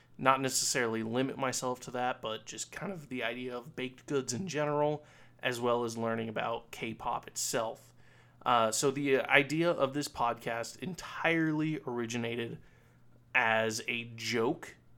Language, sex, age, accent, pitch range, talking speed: English, male, 20-39, American, 115-140 Hz, 145 wpm